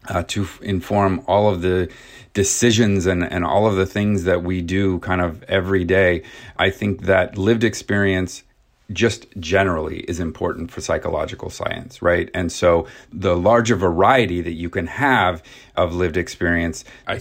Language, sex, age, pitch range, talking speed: English, male, 30-49, 90-105 Hz, 160 wpm